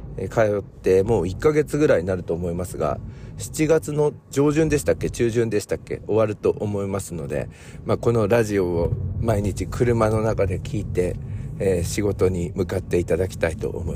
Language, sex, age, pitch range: Japanese, male, 50-69, 85-115 Hz